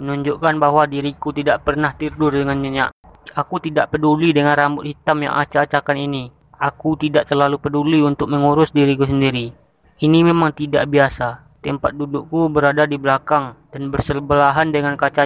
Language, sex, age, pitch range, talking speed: Indonesian, female, 20-39, 140-150 Hz, 150 wpm